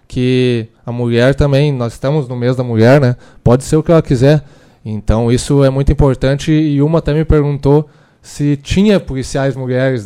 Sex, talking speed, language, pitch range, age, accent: male, 185 wpm, Portuguese, 125-150 Hz, 20-39, Brazilian